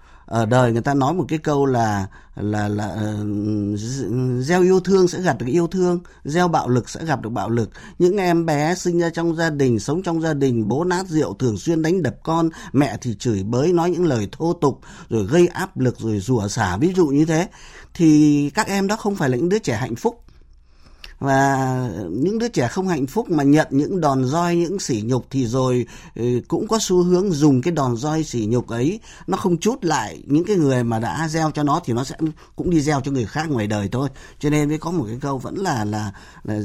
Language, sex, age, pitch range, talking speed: Vietnamese, male, 20-39, 120-170 Hz, 235 wpm